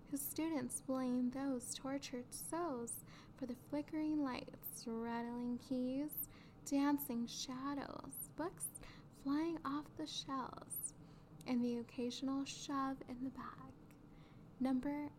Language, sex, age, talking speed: English, female, 10-29, 105 wpm